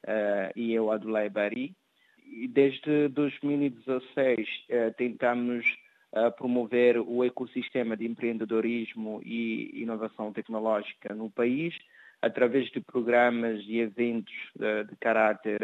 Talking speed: 105 wpm